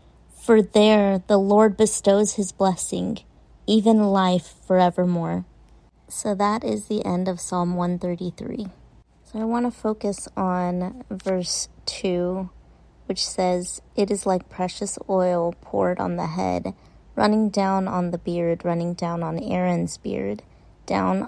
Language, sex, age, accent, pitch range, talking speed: English, female, 30-49, American, 170-200 Hz, 135 wpm